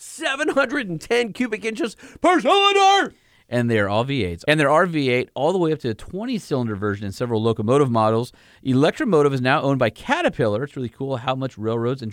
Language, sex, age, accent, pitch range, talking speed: English, male, 30-49, American, 110-150 Hz, 195 wpm